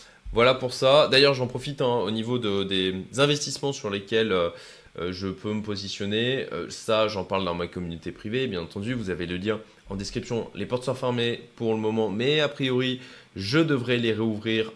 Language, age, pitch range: French, 20-39, 95-130 Hz